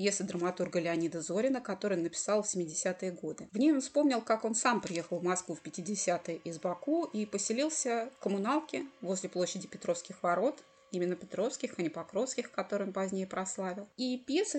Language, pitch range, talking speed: Russian, 180-245 Hz, 170 wpm